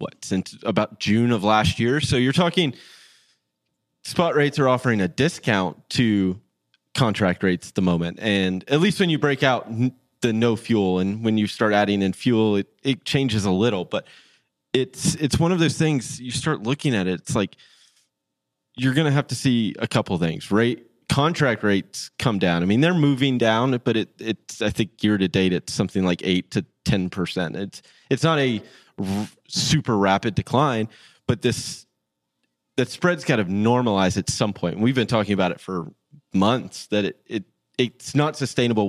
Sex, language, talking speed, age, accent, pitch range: male, English, 190 wpm, 20-39, American, 100-135 Hz